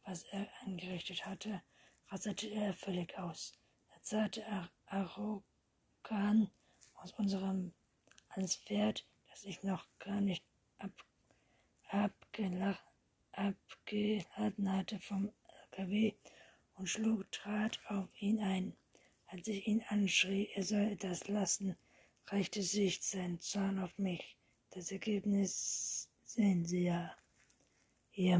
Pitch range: 180-205 Hz